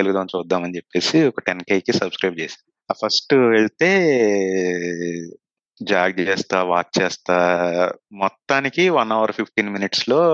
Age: 30-49